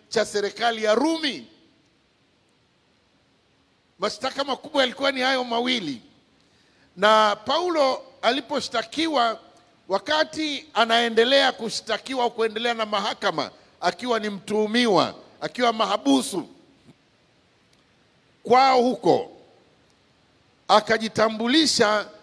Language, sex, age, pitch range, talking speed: English, male, 50-69, 220-270 Hz, 70 wpm